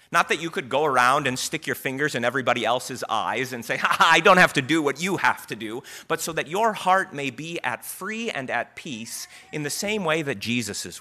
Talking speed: 250 wpm